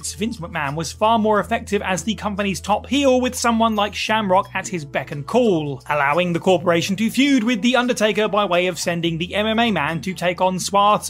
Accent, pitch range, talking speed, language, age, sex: British, 175-230 Hz, 210 wpm, English, 30-49, male